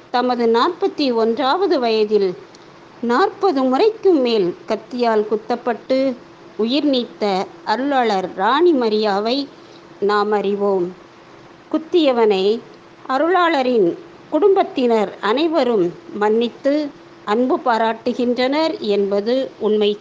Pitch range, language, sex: 220-320 Hz, Tamil, female